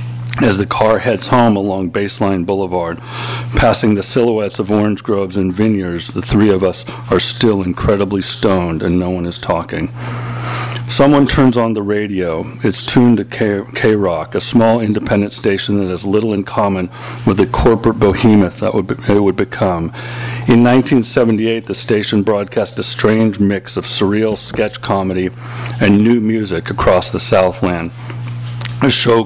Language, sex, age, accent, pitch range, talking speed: English, male, 40-59, American, 95-120 Hz, 150 wpm